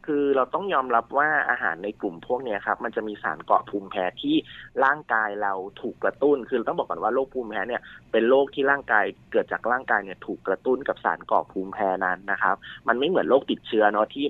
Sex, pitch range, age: male, 100-135 Hz, 30-49